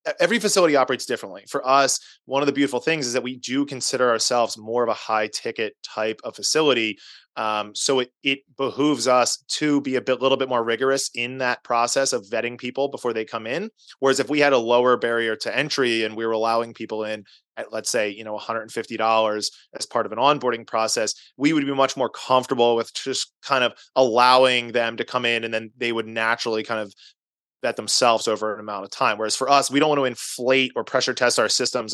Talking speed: 220 wpm